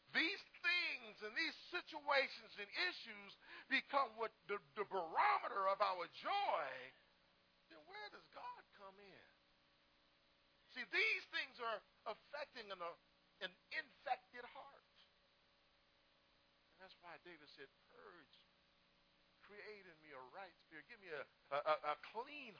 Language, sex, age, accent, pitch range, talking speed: English, male, 50-69, American, 165-275 Hz, 125 wpm